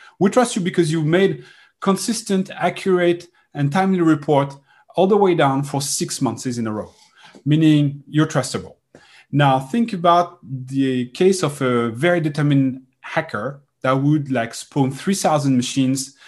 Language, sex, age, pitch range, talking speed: English, male, 30-49, 135-175 Hz, 150 wpm